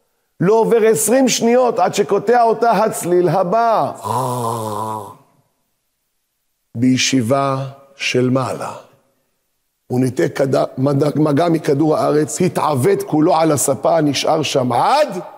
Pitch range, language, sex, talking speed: 145-205 Hz, Hebrew, male, 95 wpm